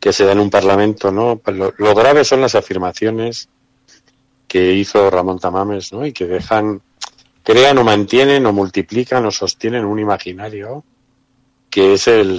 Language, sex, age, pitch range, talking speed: Spanish, male, 50-69, 95-120 Hz, 160 wpm